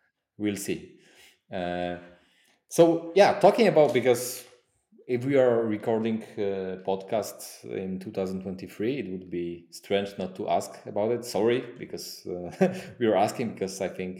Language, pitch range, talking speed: English, 95-155 Hz, 145 wpm